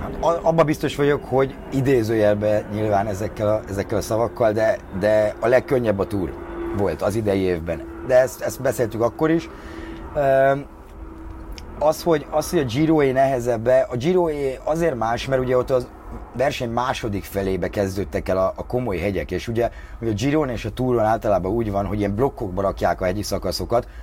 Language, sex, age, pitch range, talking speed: Hungarian, male, 30-49, 95-125 Hz, 170 wpm